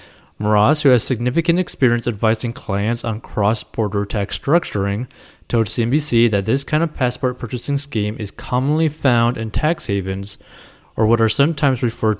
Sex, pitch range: male, 105-135 Hz